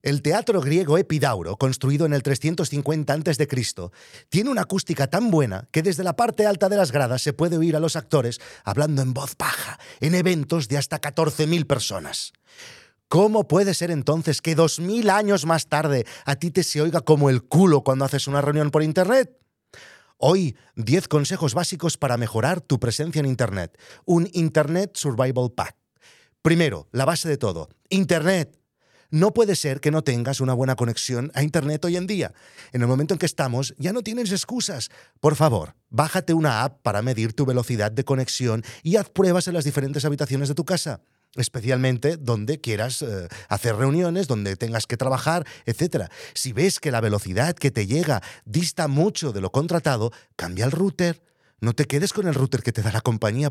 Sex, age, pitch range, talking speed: male, 40-59, 125-170 Hz, 185 wpm